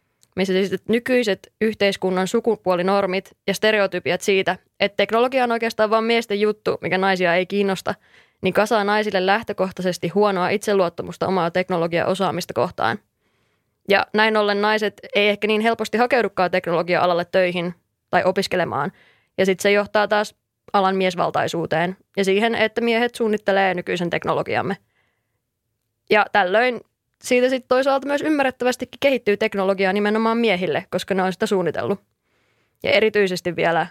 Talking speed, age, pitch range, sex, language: 135 wpm, 20-39, 185-215 Hz, female, Finnish